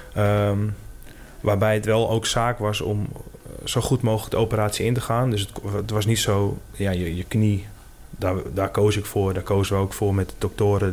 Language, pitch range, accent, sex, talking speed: Dutch, 100-110 Hz, Dutch, male, 210 wpm